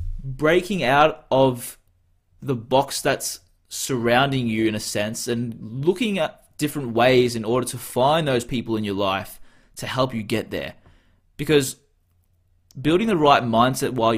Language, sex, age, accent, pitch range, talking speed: English, male, 20-39, Australian, 105-155 Hz, 150 wpm